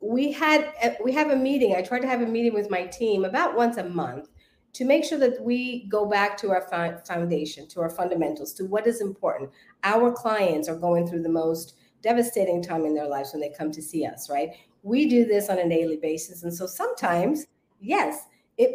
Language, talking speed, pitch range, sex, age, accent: English, 215 wpm, 175-240 Hz, female, 40-59, American